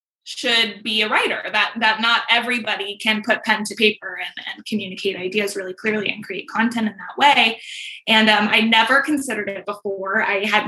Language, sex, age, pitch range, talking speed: English, female, 20-39, 200-225 Hz, 190 wpm